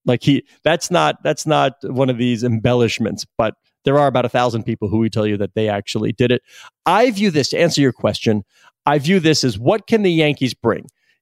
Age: 40-59